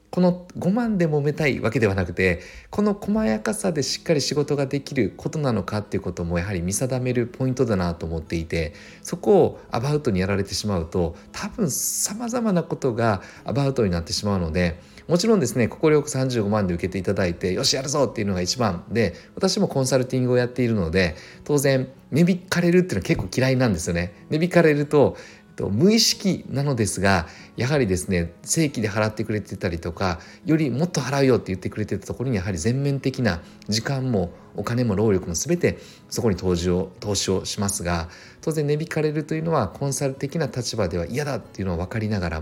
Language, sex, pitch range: Japanese, male, 100-155 Hz